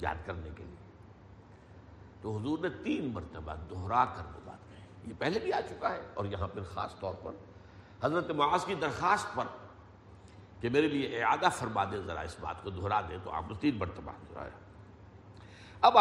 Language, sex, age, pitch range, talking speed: Urdu, male, 60-79, 95-120 Hz, 180 wpm